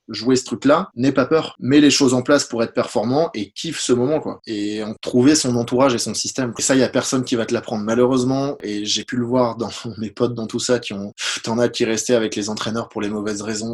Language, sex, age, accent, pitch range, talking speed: French, male, 20-39, French, 110-125 Hz, 265 wpm